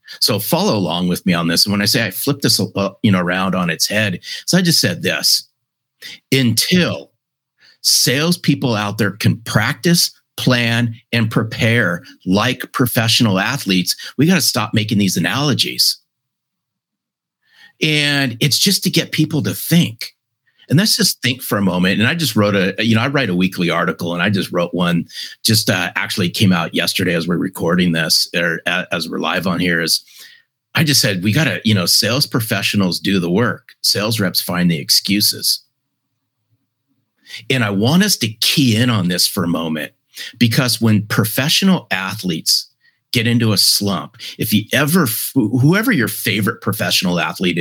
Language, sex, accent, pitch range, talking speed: English, male, American, 95-130 Hz, 175 wpm